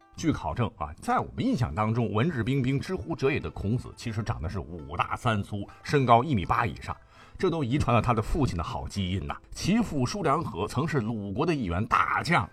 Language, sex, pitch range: Chinese, male, 105-150 Hz